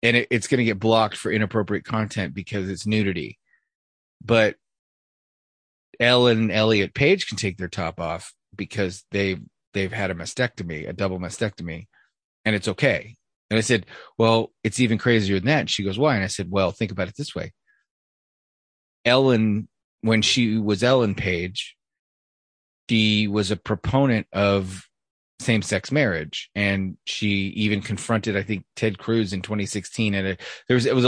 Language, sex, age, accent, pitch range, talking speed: English, male, 30-49, American, 95-115 Hz, 160 wpm